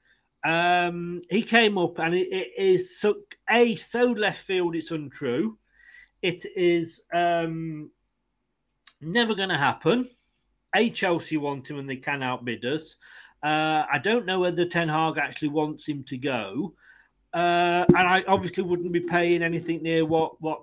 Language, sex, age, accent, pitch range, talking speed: English, male, 40-59, British, 155-195 Hz, 155 wpm